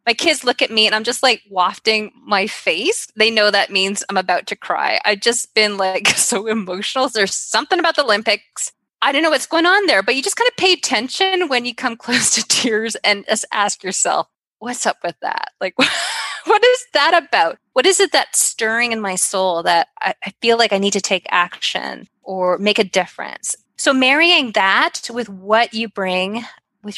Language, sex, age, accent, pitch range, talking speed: English, female, 20-39, American, 195-275 Hz, 205 wpm